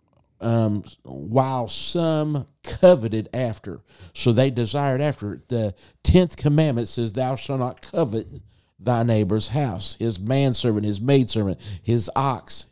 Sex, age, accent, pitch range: male, 50-69, American, 105-135 Hz